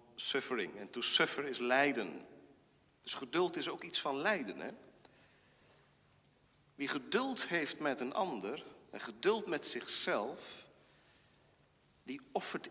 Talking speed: 125 wpm